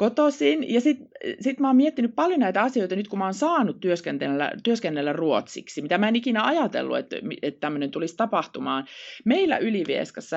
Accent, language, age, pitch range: native, Finnish, 30-49, 155-240 Hz